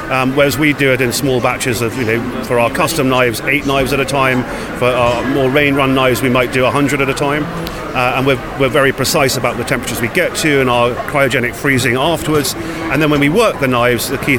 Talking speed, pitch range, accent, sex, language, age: 245 wpm, 125-150 Hz, British, male, English, 40-59